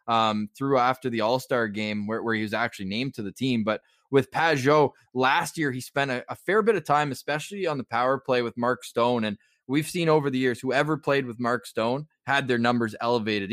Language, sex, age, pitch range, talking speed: English, male, 20-39, 120-150 Hz, 225 wpm